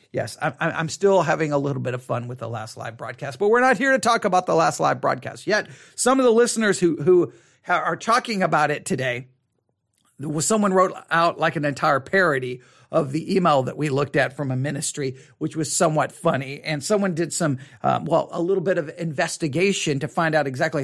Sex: male